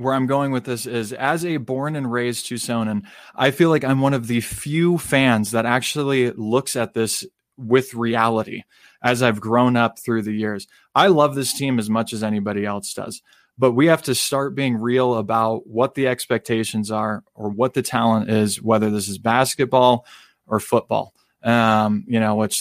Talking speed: 190 wpm